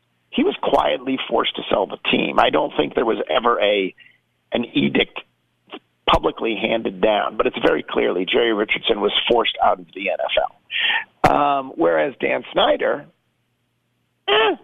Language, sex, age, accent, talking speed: English, male, 50-69, American, 150 wpm